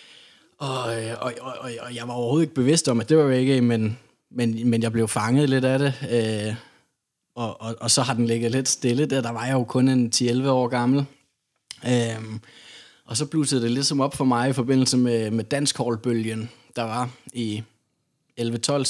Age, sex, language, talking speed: 20-39, male, Danish, 200 wpm